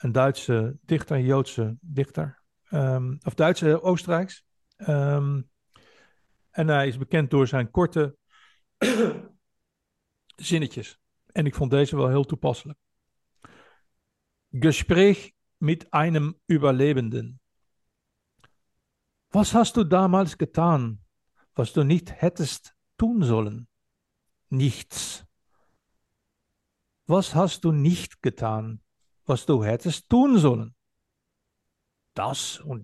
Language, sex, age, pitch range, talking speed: Dutch, male, 60-79, 115-175 Hz, 100 wpm